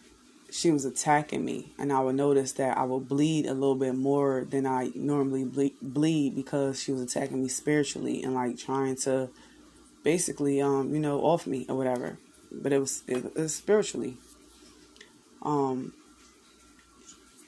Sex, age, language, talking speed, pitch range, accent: female, 20-39, English, 155 wpm, 135-150 Hz, American